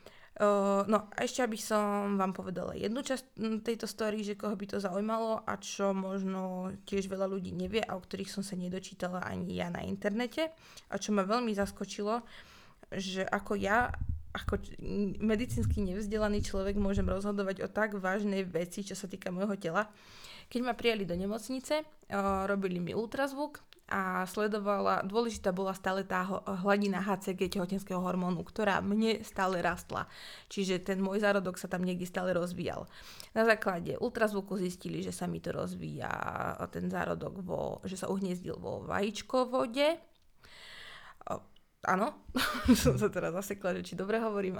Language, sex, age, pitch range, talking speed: Slovak, female, 20-39, 185-215 Hz, 155 wpm